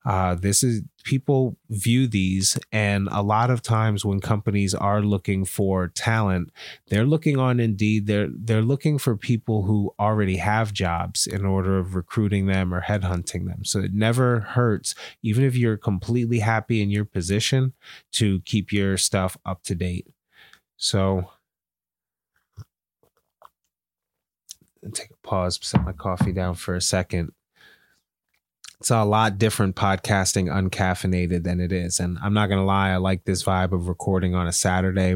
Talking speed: 160 wpm